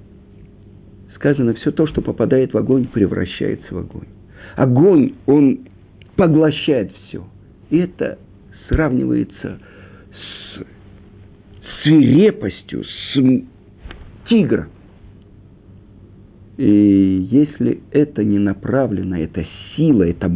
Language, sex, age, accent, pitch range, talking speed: Russian, male, 50-69, native, 100-145 Hz, 90 wpm